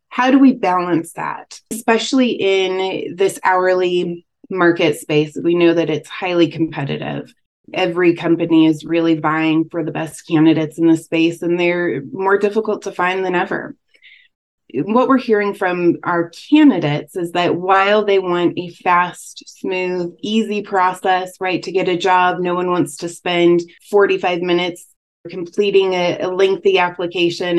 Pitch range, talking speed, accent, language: 170-195 Hz, 150 wpm, American, English